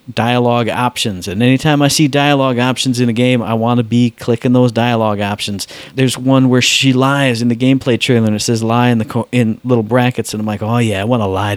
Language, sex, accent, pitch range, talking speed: English, male, American, 115-140 Hz, 245 wpm